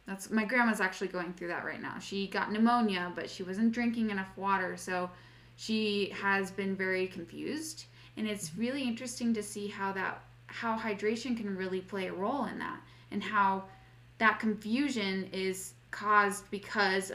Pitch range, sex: 190-225 Hz, female